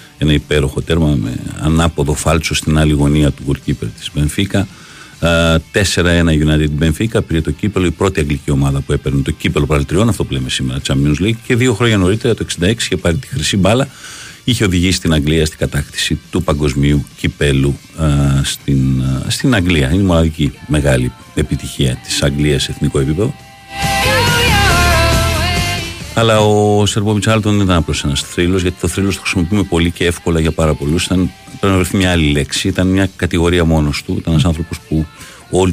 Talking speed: 170 wpm